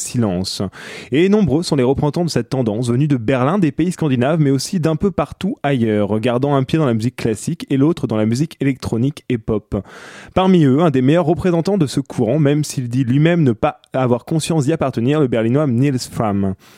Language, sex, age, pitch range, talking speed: French, male, 20-39, 120-160 Hz, 210 wpm